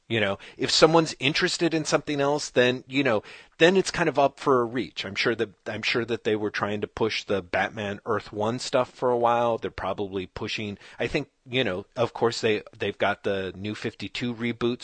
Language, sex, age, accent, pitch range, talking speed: English, male, 40-59, American, 105-135 Hz, 220 wpm